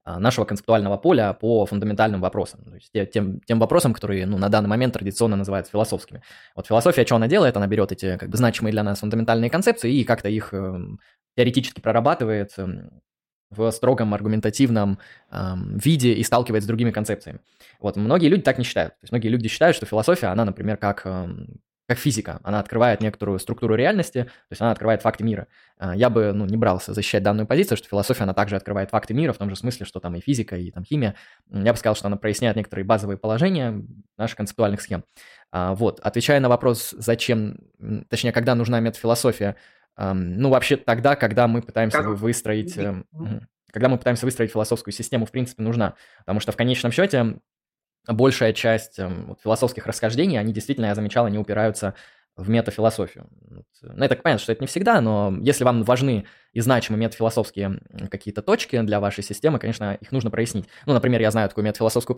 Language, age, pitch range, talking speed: Russian, 20-39, 100-120 Hz, 185 wpm